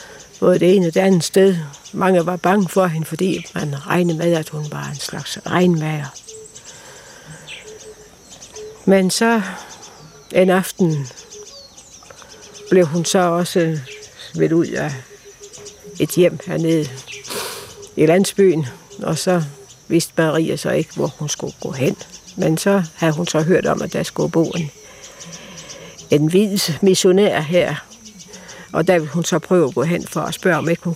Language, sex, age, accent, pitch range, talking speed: Danish, female, 60-79, native, 155-185 Hz, 155 wpm